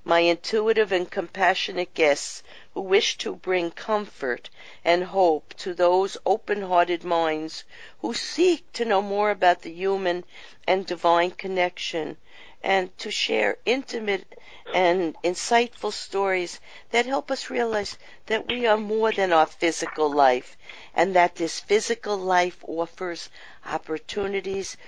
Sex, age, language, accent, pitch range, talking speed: female, 50-69, English, American, 160-205 Hz, 130 wpm